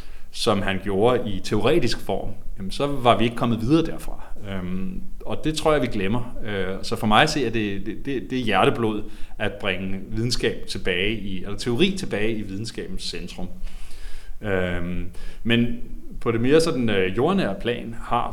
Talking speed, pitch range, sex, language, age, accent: 155 wpm, 95-115 Hz, male, Danish, 30-49, native